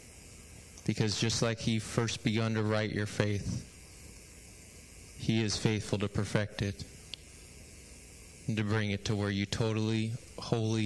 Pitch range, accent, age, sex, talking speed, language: 95-110 Hz, American, 20-39, male, 140 wpm, English